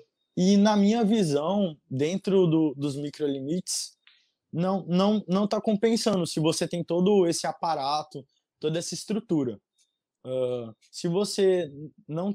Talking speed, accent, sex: 125 wpm, Brazilian, male